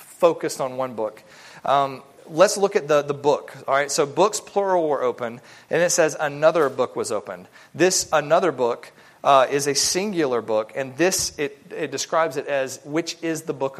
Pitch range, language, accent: 140-165 Hz, English, American